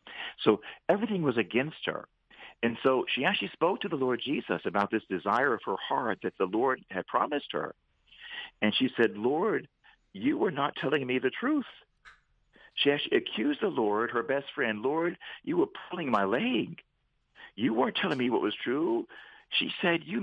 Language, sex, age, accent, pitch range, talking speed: English, male, 50-69, American, 100-155 Hz, 180 wpm